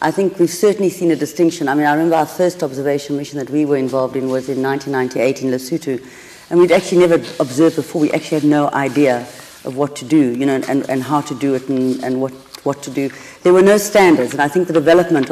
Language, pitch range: English, 140-170 Hz